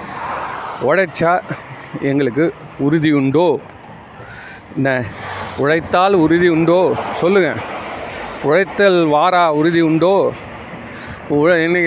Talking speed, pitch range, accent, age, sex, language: 70 wpm, 160-220 Hz, native, 40-59, male, Tamil